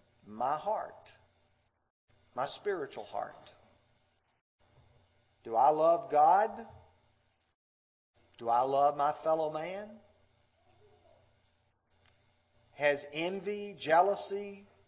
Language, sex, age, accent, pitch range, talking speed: English, male, 40-59, American, 100-160 Hz, 75 wpm